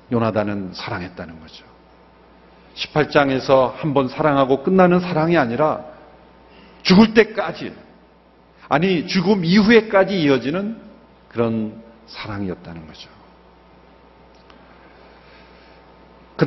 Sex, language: male, Korean